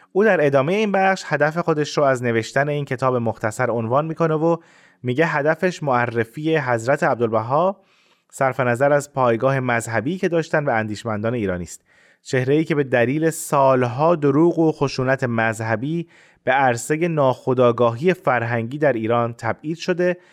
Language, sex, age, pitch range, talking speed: Persian, male, 30-49, 115-160 Hz, 145 wpm